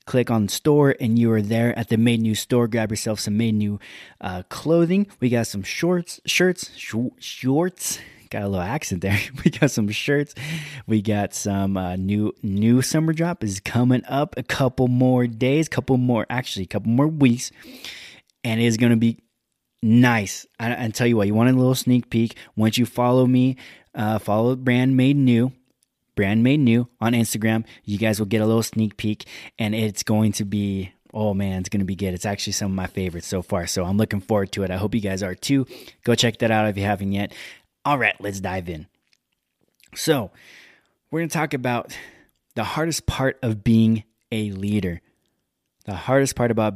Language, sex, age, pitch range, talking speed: English, male, 20-39, 105-125 Hz, 205 wpm